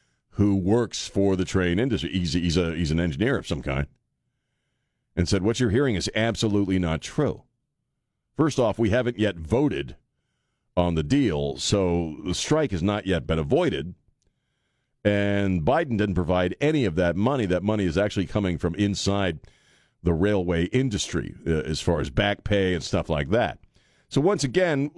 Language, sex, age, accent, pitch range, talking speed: English, male, 50-69, American, 90-125 Hz, 175 wpm